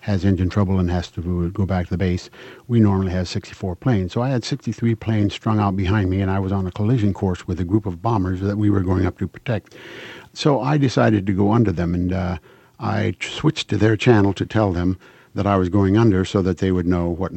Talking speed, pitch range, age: 250 wpm, 95-110 Hz, 50-69